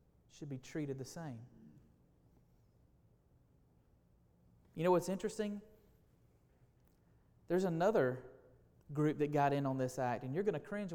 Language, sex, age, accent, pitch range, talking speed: English, male, 30-49, American, 120-180 Hz, 125 wpm